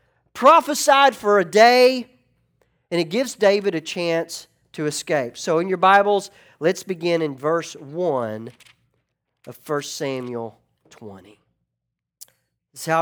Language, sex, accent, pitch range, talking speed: English, male, American, 165-260 Hz, 130 wpm